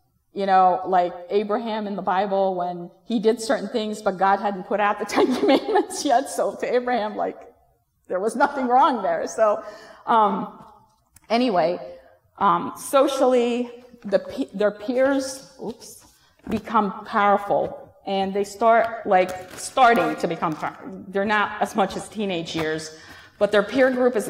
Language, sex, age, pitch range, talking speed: Arabic, female, 30-49, 185-225 Hz, 150 wpm